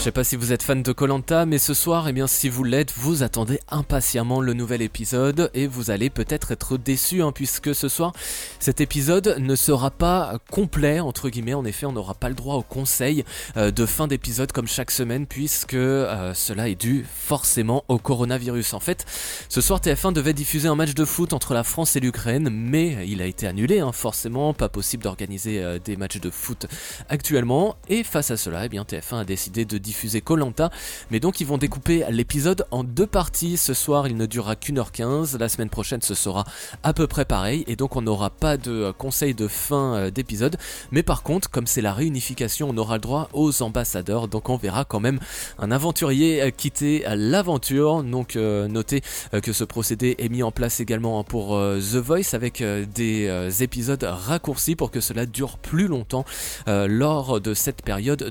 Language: French